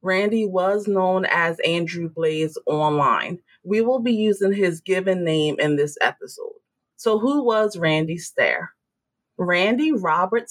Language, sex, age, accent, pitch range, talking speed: English, female, 30-49, American, 165-235 Hz, 135 wpm